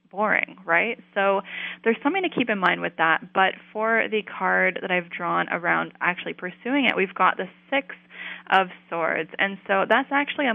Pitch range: 180-240 Hz